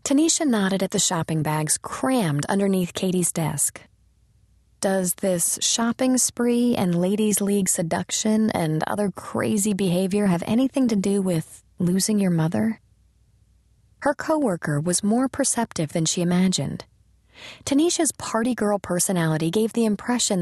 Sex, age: female, 30-49